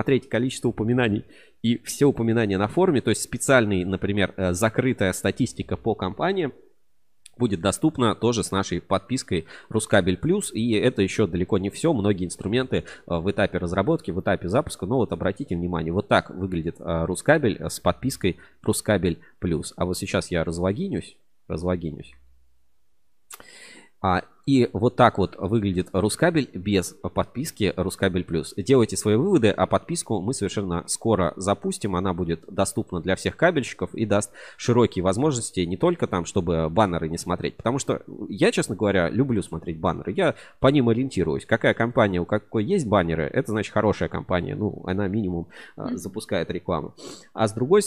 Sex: male